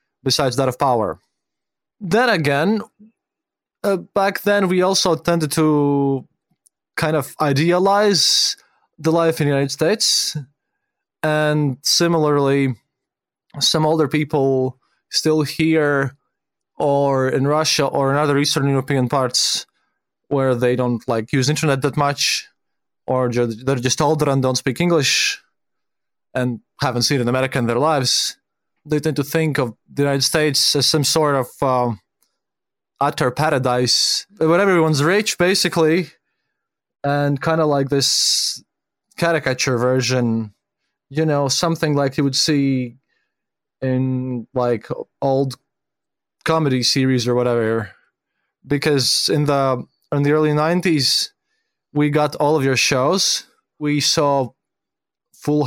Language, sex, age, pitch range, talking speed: English, male, 20-39, 130-160 Hz, 130 wpm